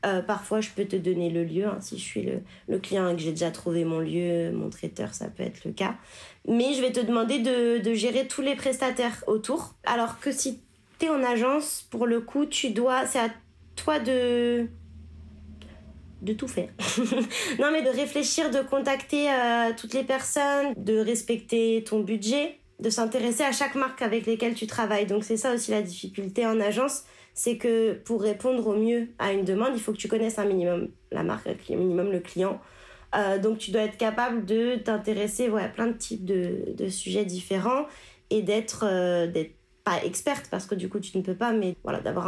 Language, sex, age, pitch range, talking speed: French, female, 20-39, 205-255 Hz, 210 wpm